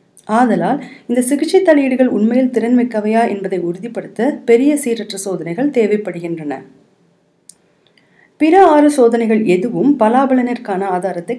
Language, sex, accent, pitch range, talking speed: Tamil, female, native, 200-255 Hz, 95 wpm